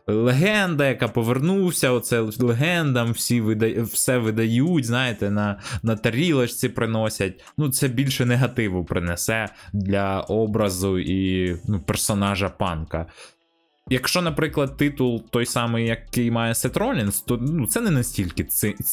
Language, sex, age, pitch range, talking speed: Ukrainian, male, 20-39, 95-120 Hz, 125 wpm